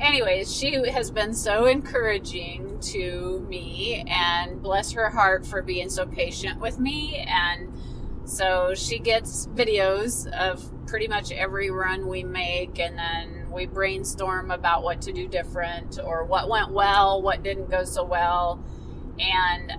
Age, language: 30-49, English